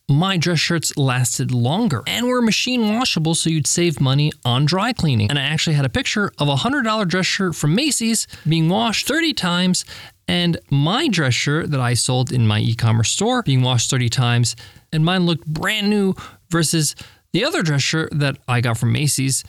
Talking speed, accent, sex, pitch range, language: 195 wpm, American, male, 140-195 Hz, English